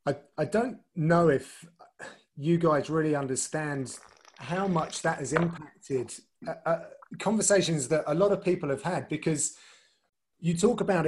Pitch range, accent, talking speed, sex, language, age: 145-175 Hz, British, 145 wpm, male, English, 30-49